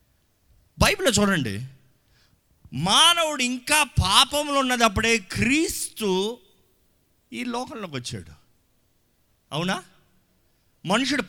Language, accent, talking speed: Telugu, native, 65 wpm